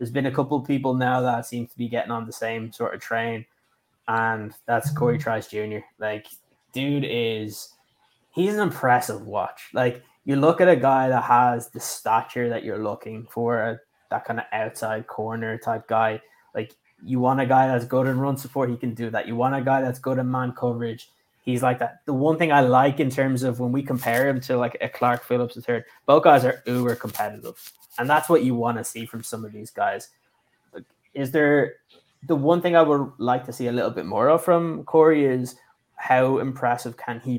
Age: 20-39